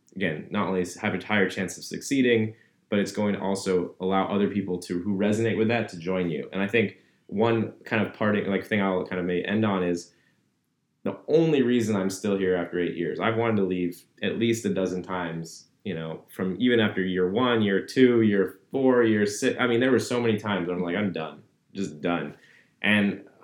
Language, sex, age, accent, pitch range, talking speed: English, male, 20-39, American, 95-115 Hz, 220 wpm